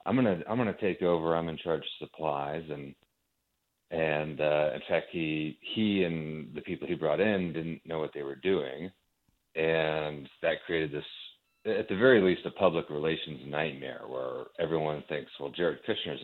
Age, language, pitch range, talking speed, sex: 40-59, English, 70-80 Hz, 185 wpm, male